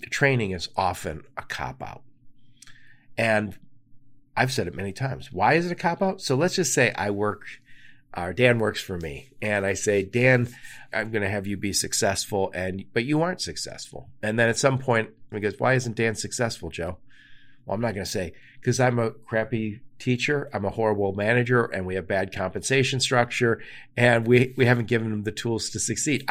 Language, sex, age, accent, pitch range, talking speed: English, male, 40-59, American, 105-135 Hz, 200 wpm